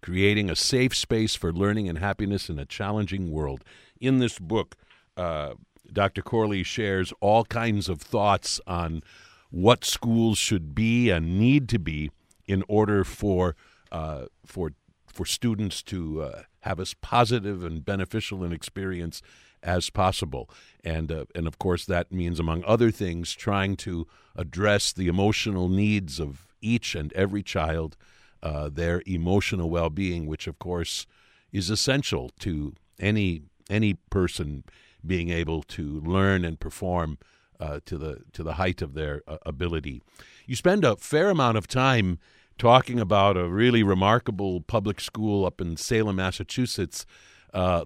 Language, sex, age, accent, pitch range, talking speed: English, male, 60-79, American, 85-105 Hz, 150 wpm